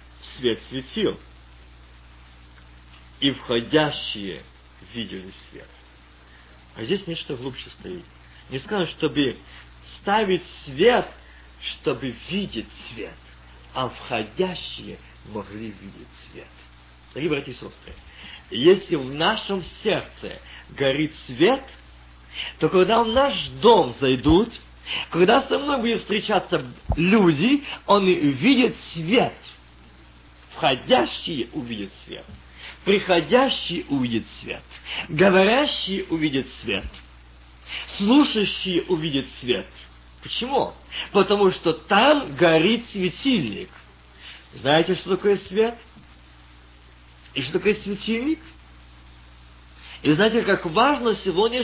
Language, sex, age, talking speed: Russian, male, 50-69, 95 wpm